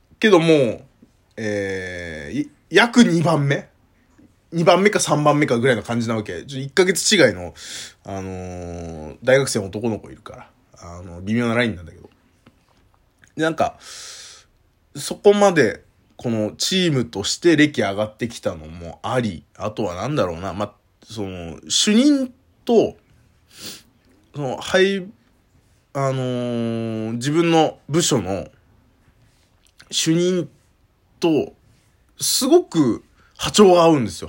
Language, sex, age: Japanese, male, 20-39